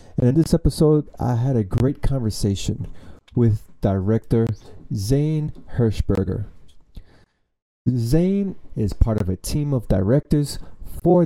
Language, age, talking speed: English, 30-49, 115 wpm